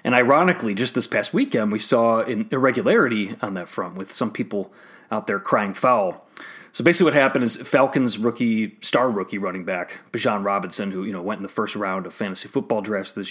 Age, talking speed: 30-49, 205 wpm